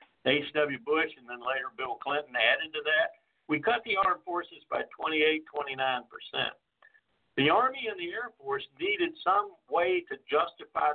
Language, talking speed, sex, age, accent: English, 160 wpm, male, 60-79, American